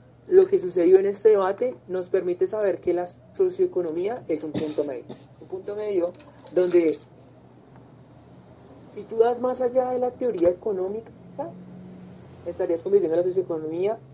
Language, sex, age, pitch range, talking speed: English, male, 30-49, 155-205 Hz, 140 wpm